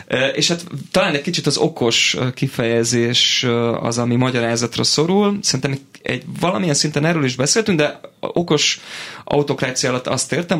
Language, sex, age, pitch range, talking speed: Hungarian, male, 30-49, 115-150 Hz, 135 wpm